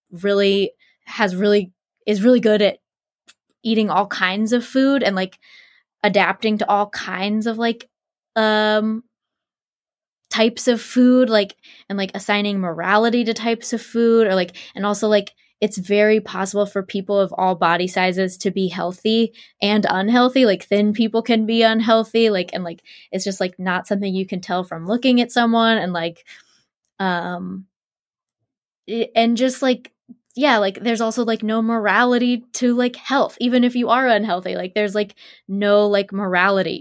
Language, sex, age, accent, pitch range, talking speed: English, female, 10-29, American, 185-230 Hz, 165 wpm